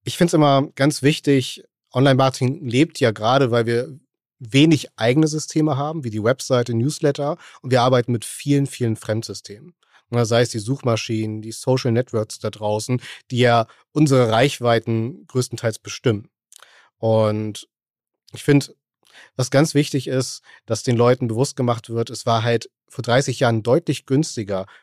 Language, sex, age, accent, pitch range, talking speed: German, male, 40-59, German, 115-140 Hz, 160 wpm